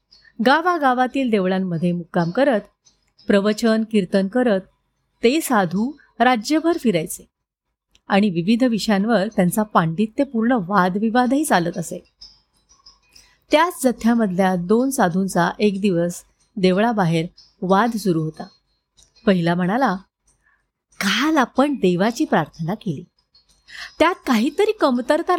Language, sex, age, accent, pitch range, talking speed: Marathi, female, 30-49, native, 185-260 Hz, 95 wpm